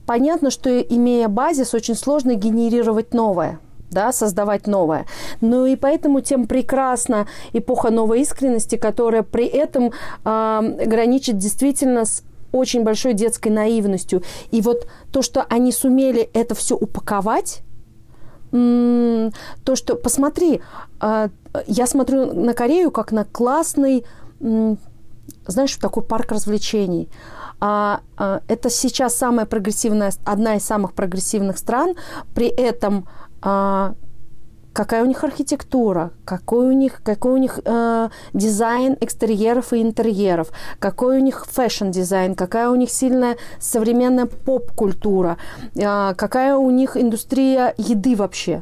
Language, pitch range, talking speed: Russian, 215-255 Hz, 125 wpm